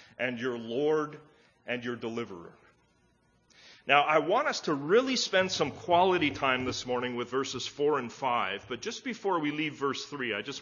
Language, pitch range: English, 130-215 Hz